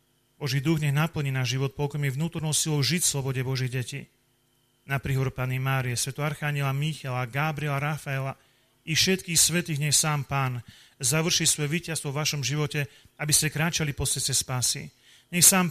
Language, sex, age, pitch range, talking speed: Slovak, male, 40-59, 130-155 Hz, 165 wpm